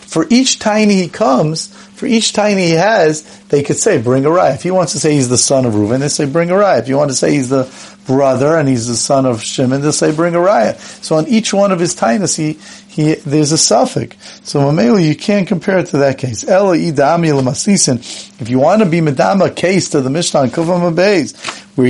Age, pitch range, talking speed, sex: 40-59, 140-200 Hz, 240 wpm, male